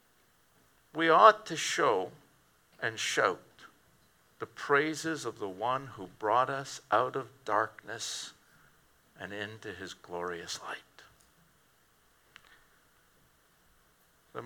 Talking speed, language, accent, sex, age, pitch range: 95 wpm, English, American, male, 60-79, 145-210 Hz